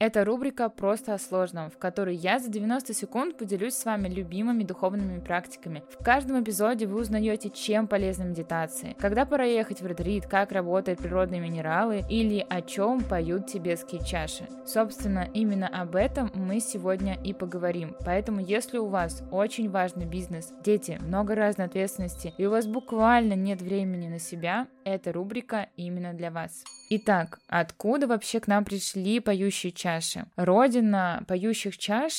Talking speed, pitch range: 155 wpm, 180-215 Hz